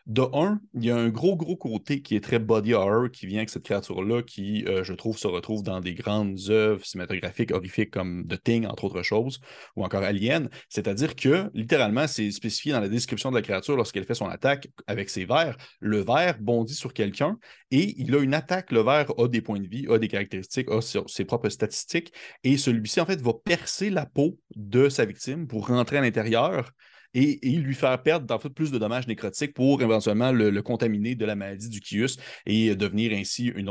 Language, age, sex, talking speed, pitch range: French, 30-49, male, 215 wpm, 105-130 Hz